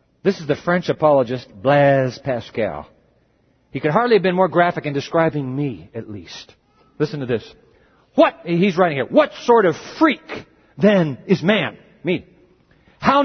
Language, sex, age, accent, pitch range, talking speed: English, male, 50-69, American, 160-235 Hz, 160 wpm